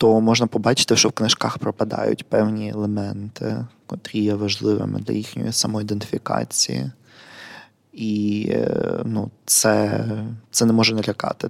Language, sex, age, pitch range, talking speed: Ukrainian, male, 20-39, 105-120 Hz, 115 wpm